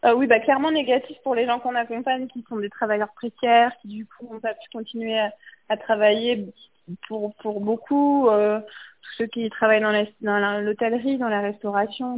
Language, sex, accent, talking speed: French, female, French, 195 wpm